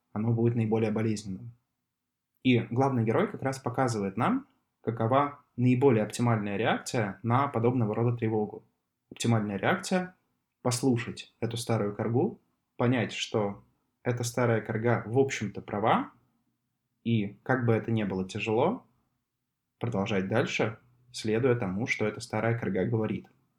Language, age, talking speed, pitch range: Russian, 20-39, 125 wpm, 110-125 Hz